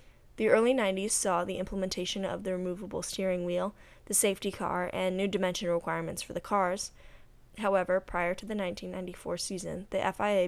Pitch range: 180-205 Hz